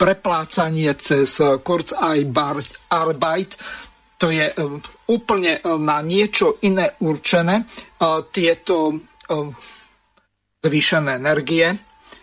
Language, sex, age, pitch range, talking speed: Slovak, male, 50-69, 150-180 Hz, 95 wpm